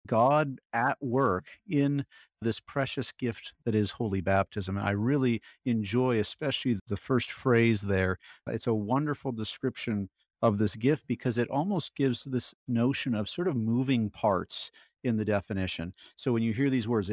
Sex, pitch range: male, 110-135 Hz